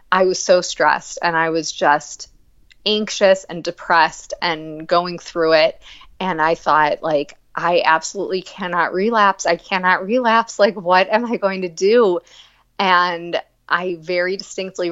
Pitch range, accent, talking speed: 165-205 Hz, American, 150 wpm